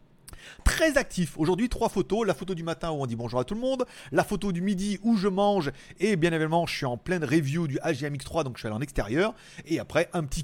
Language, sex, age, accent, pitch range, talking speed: French, male, 30-49, French, 145-200 Hz, 260 wpm